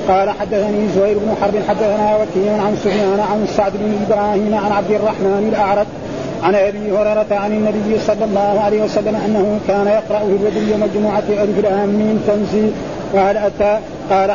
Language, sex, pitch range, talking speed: Arabic, male, 205-215 Hz, 165 wpm